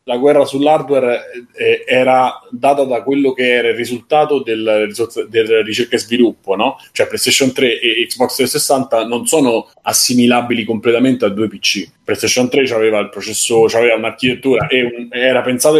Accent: native